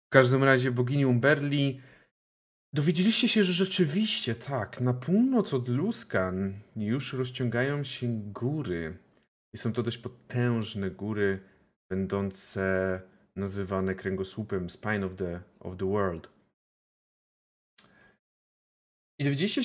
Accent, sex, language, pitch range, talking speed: native, male, Polish, 100-135 Hz, 105 wpm